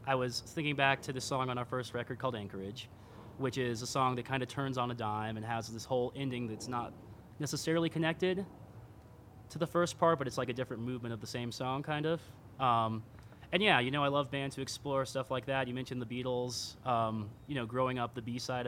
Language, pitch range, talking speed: English, 115-135 Hz, 240 wpm